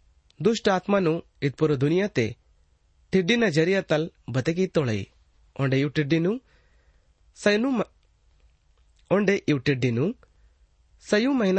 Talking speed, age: 55 wpm, 30-49